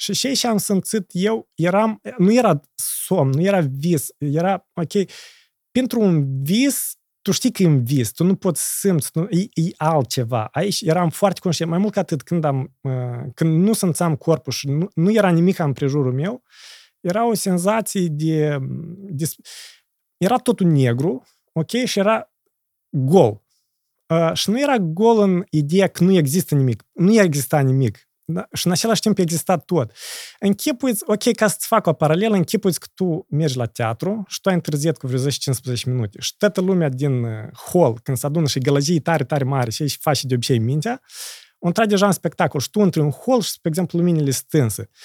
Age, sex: 30-49, male